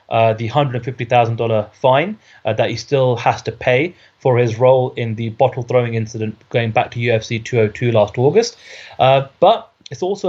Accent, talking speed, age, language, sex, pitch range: British, 170 wpm, 30-49, English, male, 115-135 Hz